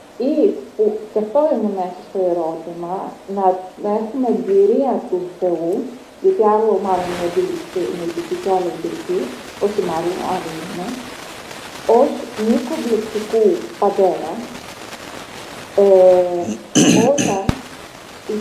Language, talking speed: Greek, 90 wpm